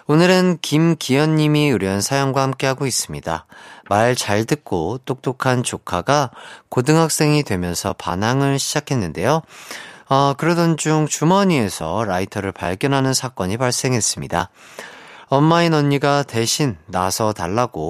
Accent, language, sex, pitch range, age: native, Korean, male, 110-155 Hz, 30-49